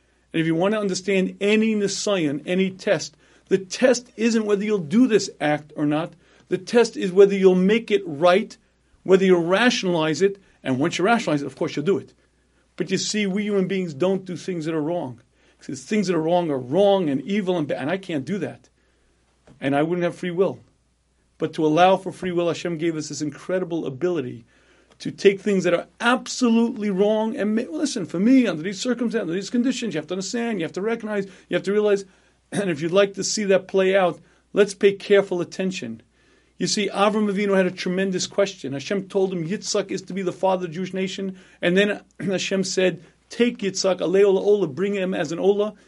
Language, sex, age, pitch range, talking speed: English, male, 40-59, 165-200 Hz, 215 wpm